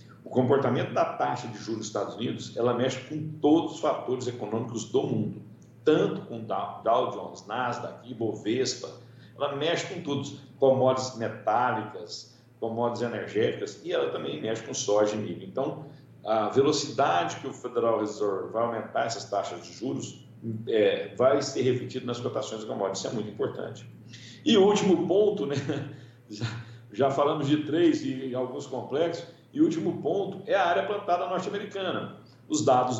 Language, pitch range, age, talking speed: Portuguese, 115-170 Hz, 60-79, 160 wpm